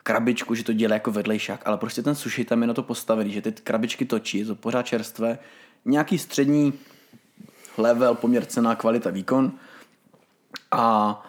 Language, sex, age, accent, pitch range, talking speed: Czech, male, 20-39, native, 115-130 Hz, 160 wpm